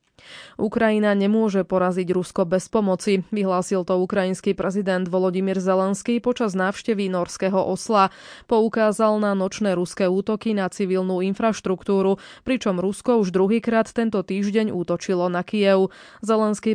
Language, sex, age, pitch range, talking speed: Slovak, female, 20-39, 185-220 Hz, 120 wpm